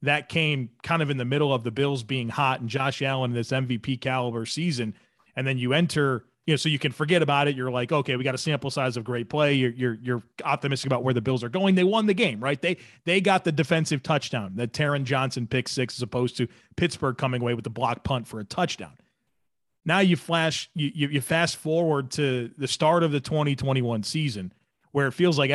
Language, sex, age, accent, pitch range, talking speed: English, male, 30-49, American, 125-155 Hz, 235 wpm